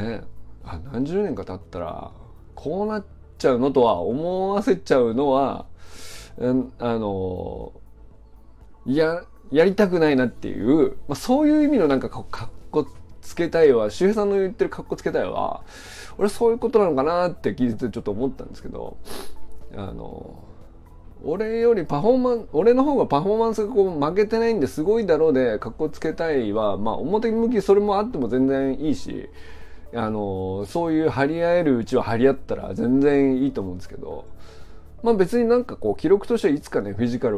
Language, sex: Japanese, male